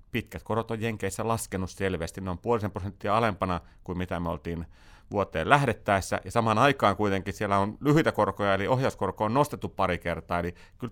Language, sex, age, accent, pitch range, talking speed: Finnish, male, 30-49, native, 90-115 Hz, 180 wpm